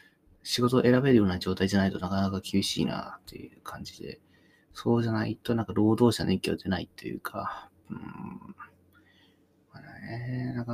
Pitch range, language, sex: 95-110 Hz, Japanese, male